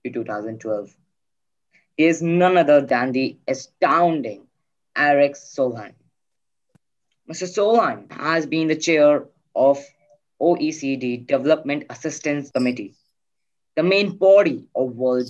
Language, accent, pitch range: English, Indian, 125-165 Hz